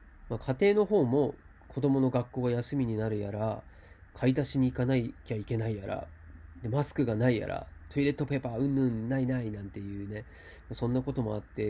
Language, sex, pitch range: Japanese, male, 105-140 Hz